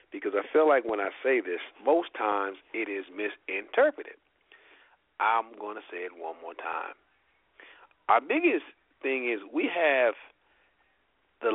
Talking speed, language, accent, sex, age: 140 wpm, English, American, male, 40-59